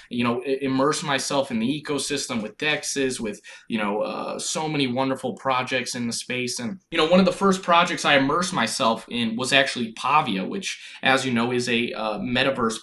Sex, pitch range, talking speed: male, 125-155 Hz, 200 wpm